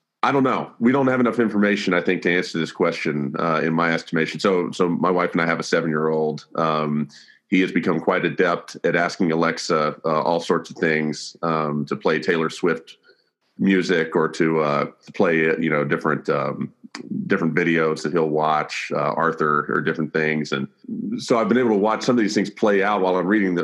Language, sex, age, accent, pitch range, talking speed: English, male, 40-59, American, 80-95 Hz, 215 wpm